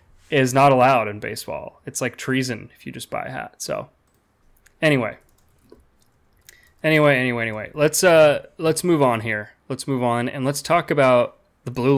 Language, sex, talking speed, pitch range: English, male, 170 wpm, 120-150 Hz